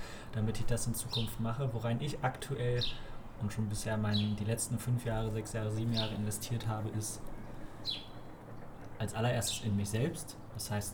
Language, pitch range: German, 110-120 Hz